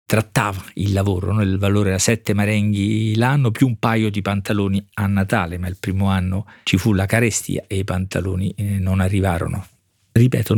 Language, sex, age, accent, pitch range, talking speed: Italian, male, 50-69, native, 100-130 Hz, 180 wpm